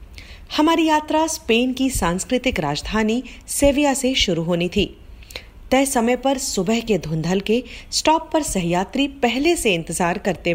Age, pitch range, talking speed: 40-59, 175-275 Hz, 140 wpm